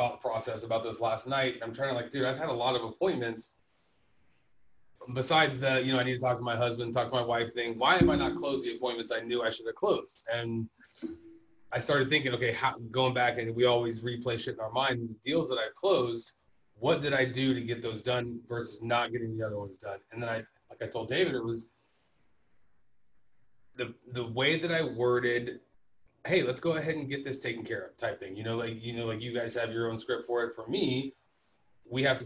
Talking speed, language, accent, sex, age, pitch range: 235 wpm, English, American, male, 20-39, 115-130 Hz